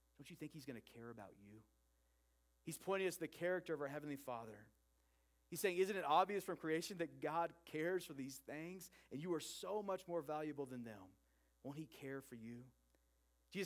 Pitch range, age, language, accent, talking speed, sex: 110-175 Hz, 40-59, English, American, 205 wpm, male